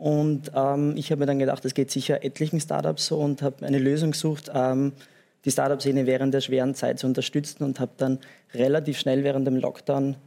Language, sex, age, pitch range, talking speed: German, male, 20-39, 130-150 Hz, 205 wpm